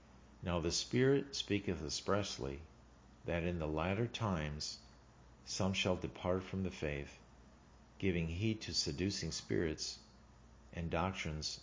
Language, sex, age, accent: English, male, 50-69, American